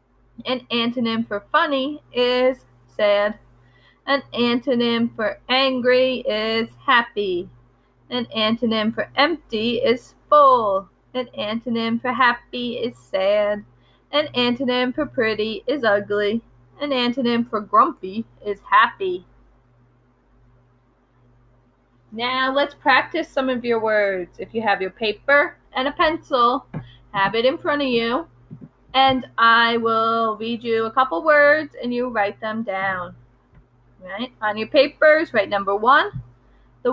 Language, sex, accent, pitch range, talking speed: English, female, American, 180-255 Hz, 125 wpm